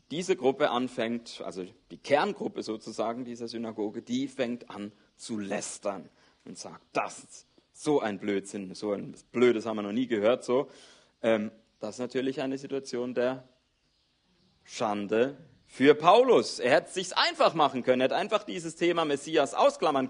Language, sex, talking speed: German, male, 160 wpm